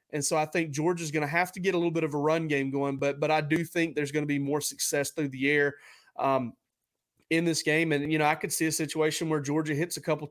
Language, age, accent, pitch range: English, 30-49, American, 140-165 Hz